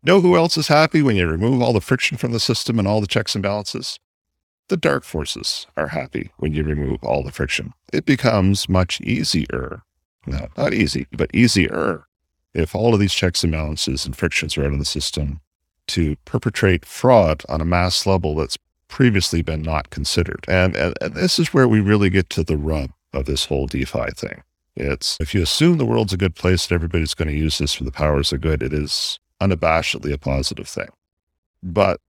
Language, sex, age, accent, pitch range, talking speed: English, male, 50-69, American, 75-100 Hz, 205 wpm